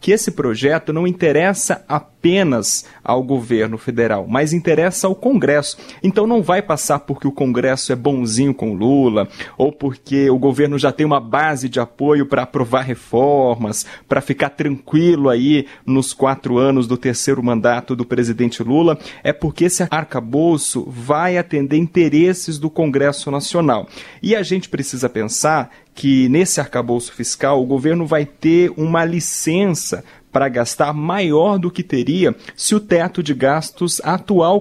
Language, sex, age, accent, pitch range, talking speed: Portuguese, male, 30-49, Brazilian, 130-175 Hz, 155 wpm